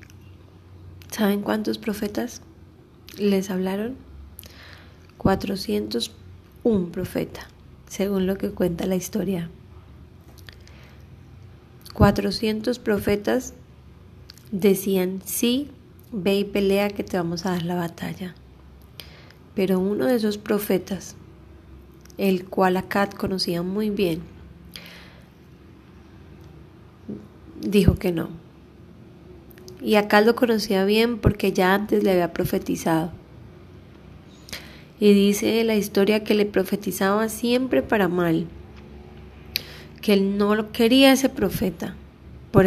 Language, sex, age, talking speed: Spanish, female, 20-39, 100 wpm